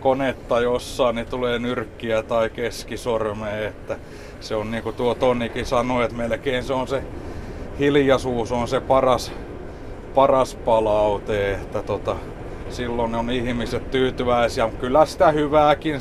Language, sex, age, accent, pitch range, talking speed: Finnish, male, 30-49, native, 115-140 Hz, 135 wpm